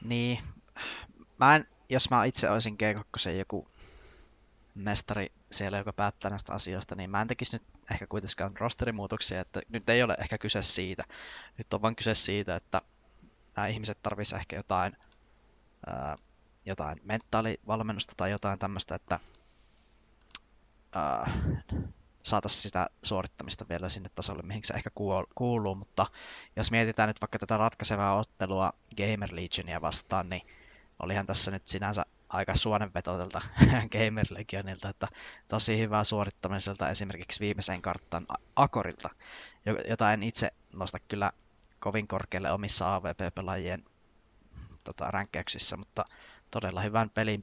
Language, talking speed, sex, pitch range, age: Finnish, 130 wpm, male, 95-110 Hz, 20-39